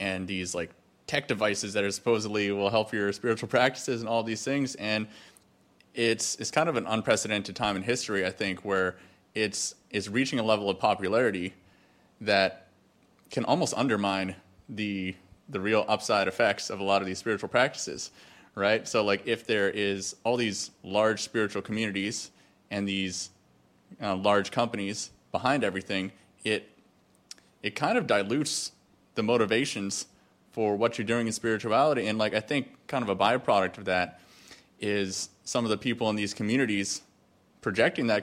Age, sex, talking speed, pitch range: 30-49, male, 165 wpm, 100-115 Hz